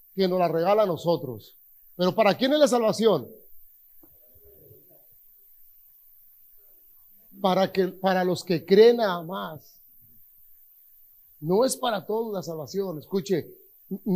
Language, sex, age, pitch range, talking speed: Spanish, male, 40-59, 180-245 Hz, 115 wpm